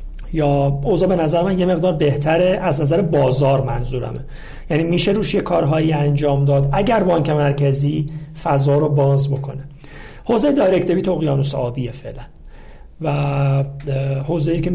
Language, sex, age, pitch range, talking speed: Persian, male, 40-59, 140-170 Hz, 140 wpm